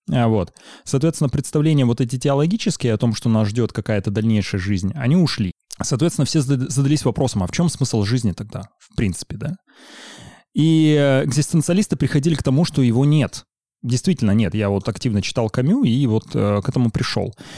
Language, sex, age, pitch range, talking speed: Russian, male, 20-39, 110-150 Hz, 170 wpm